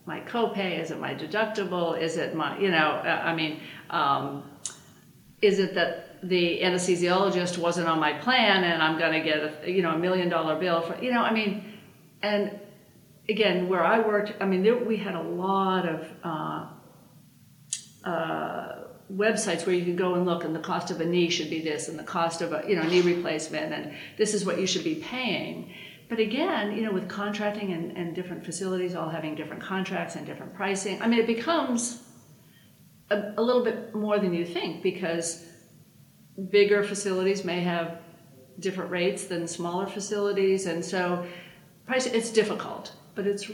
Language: English